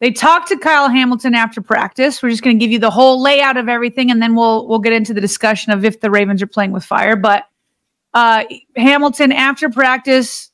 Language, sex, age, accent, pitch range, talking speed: English, female, 30-49, American, 230-275 Hz, 220 wpm